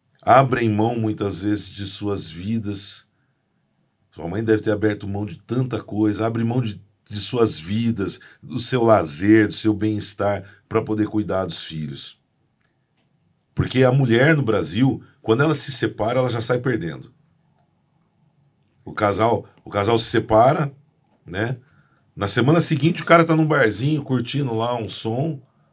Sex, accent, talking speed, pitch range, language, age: male, Brazilian, 150 wpm, 100-120 Hz, Portuguese, 40-59